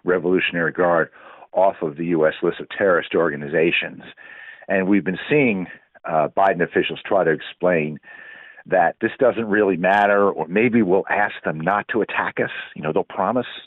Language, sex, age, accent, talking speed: English, male, 50-69, American, 165 wpm